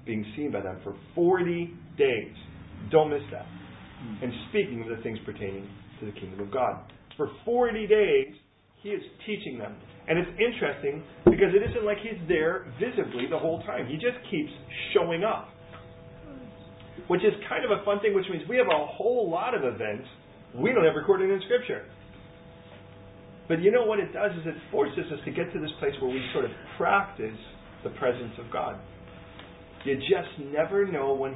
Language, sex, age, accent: English, male, 40-59, American